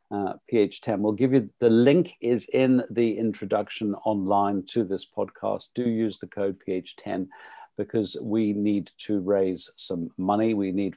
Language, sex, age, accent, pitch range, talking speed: English, male, 50-69, British, 95-110 Hz, 160 wpm